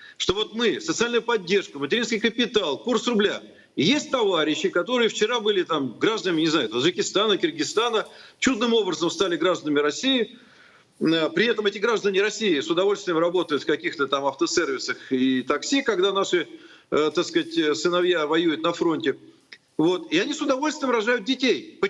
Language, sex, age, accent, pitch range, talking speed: Russian, male, 40-59, native, 205-335 Hz, 150 wpm